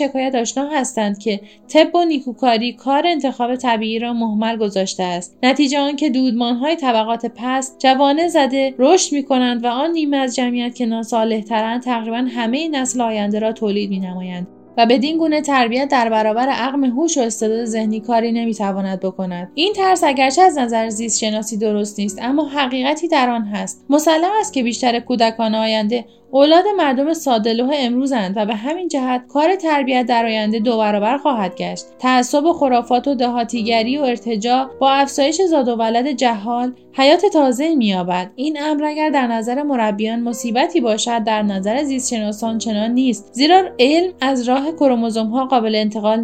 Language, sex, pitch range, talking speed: Persian, female, 225-280 Hz, 160 wpm